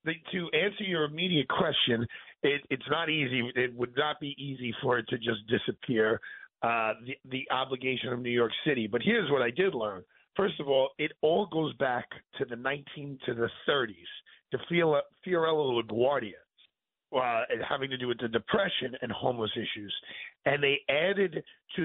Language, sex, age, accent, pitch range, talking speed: English, male, 50-69, American, 130-195 Hz, 170 wpm